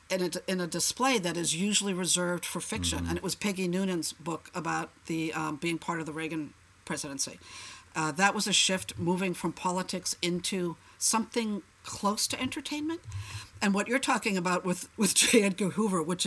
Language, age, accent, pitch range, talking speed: English, 50-69, American, 160-200 Hz, 185 wpm